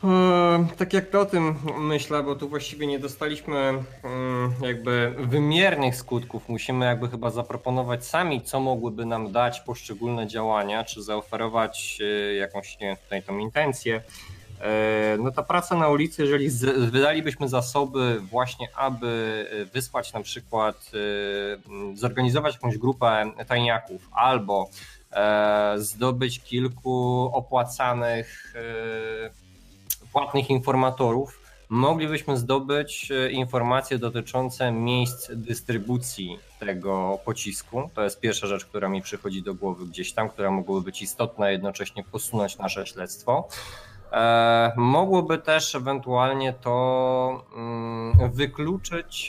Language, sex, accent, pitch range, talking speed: Polish, male, native, 110-135 Hz, 105 wpm